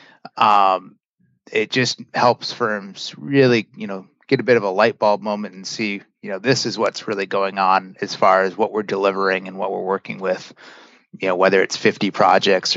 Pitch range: 100-115 Hz